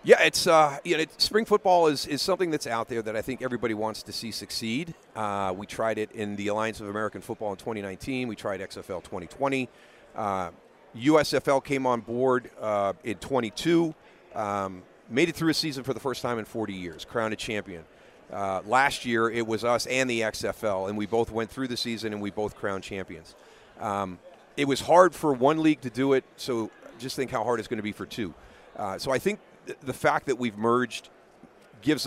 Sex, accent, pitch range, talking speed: male, American, 105-130 Hz, 210 wpm